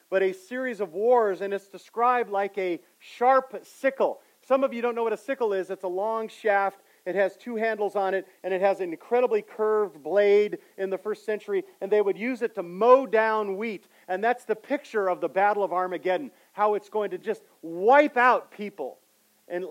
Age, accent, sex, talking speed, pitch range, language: 40-59, American, male, 210 wpm, 180-230 Hz, English